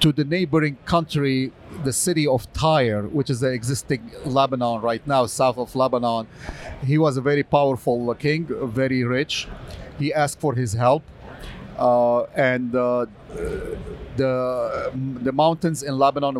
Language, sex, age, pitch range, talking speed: English, male, 40-59, 125-150 Hz, 145 wpm